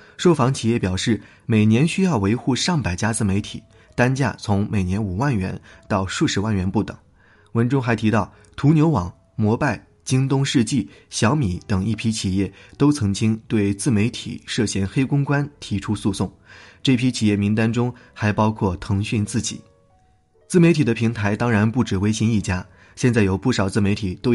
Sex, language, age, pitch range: male, Chinese, 20-39, 95-125 Hz